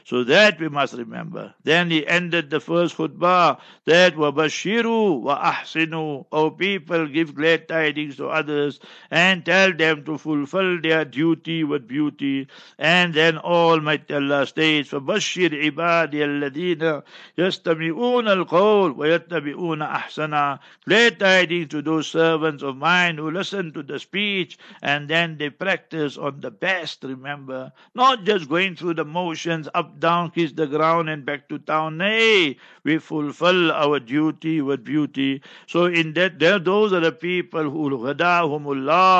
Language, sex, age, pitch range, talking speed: English, male, 60-79, 150-175 Hz, 145 wpm